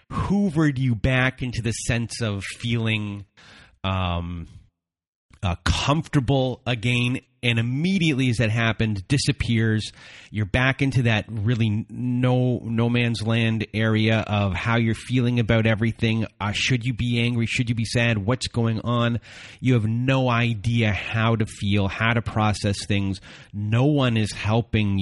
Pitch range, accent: 105-125 Hz, American